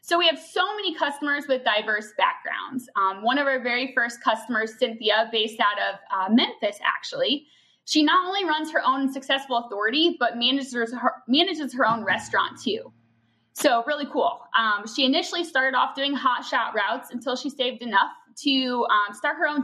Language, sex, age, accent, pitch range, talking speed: English, female, 20-39, American, 235-325 Hz, 180 wpm